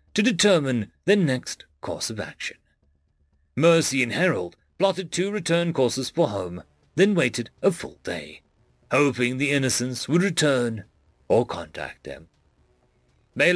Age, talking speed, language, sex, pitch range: 40-59, 135 wpm, English, male, 120-170 Hz